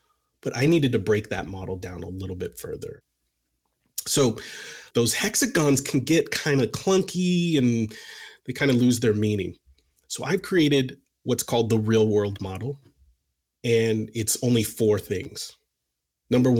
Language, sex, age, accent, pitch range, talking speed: English, male, 30-49, American, 100-135 Hz, 150 wpm